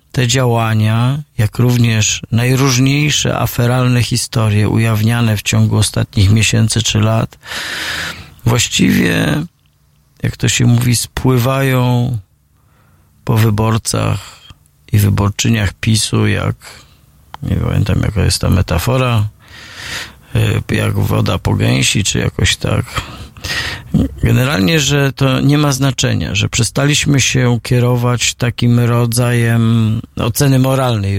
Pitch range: 110-130 Hz